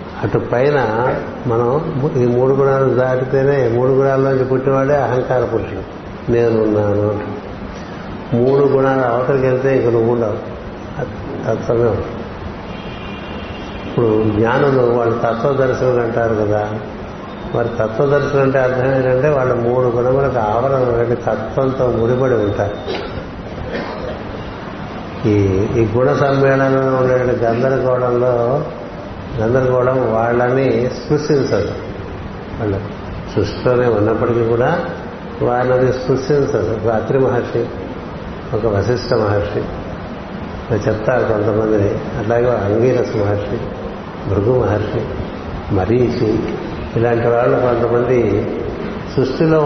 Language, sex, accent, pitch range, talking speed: Telugu, male, native, 110-130 Hz, 85 wpm